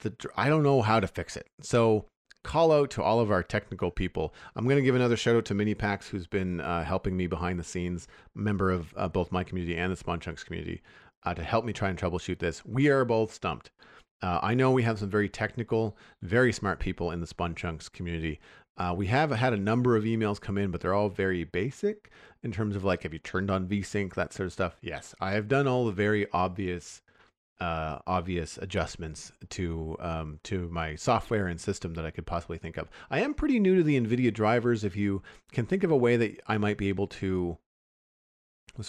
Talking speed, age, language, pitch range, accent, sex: 225 wpm, 40-59, English, 85-110 Hz, American, male